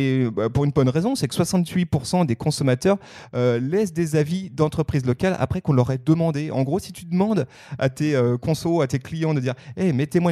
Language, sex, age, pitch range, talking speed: French, male, 30-49, 120-160 Hz, 220 wpm